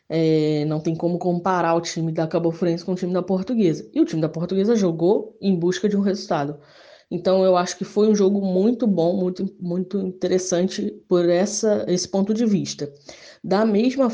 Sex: female